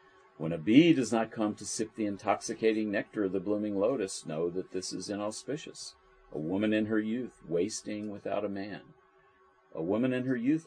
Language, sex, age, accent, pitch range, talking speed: English, male, 50-69, American, 90-120 Hz, 190 wpm